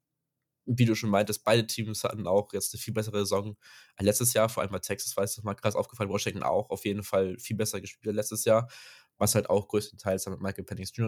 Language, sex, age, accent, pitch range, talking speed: German, male, 20-39, German, 95-110 Hz, 240 wpm